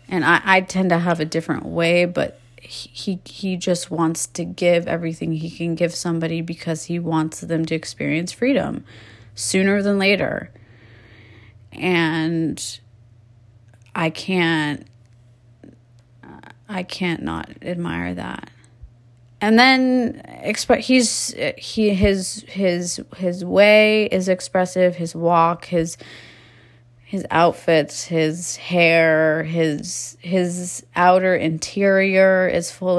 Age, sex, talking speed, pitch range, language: 30-49, female, 115 wpm, 120-185 Hz, English